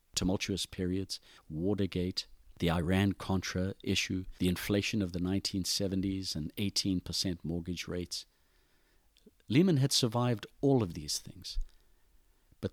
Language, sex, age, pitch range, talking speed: English, male, 50-69, 85-105 Hz, 110 wpm